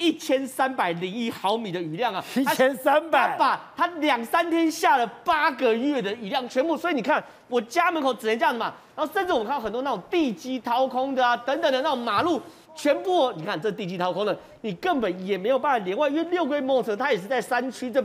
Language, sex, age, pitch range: Chinese, male, 40-59, 205-300 Hz